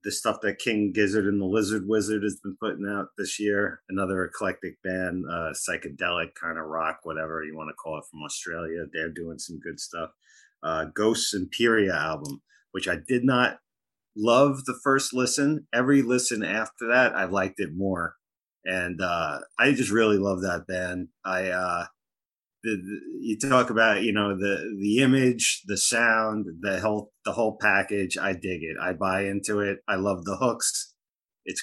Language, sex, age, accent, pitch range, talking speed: English, male, 30-49, American, 95-115 Hz, 180 wpm